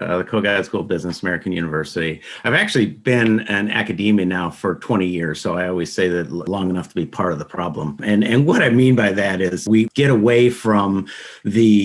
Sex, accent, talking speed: male, American, 220 wpm